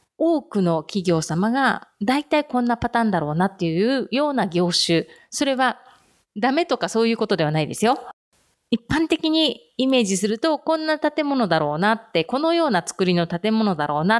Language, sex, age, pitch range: Japanese, female, 30-49, 175-270 Hz